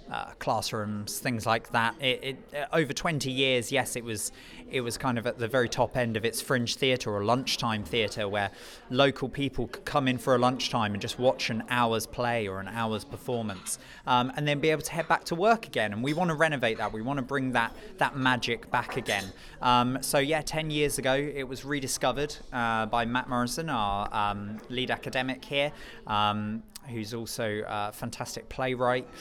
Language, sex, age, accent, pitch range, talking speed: English, male, 20-39, British, 115-145 Hz, 205 wpm